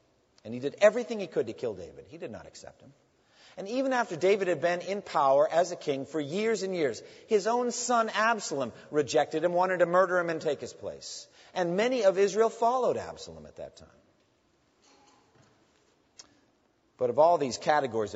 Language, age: English, 50-69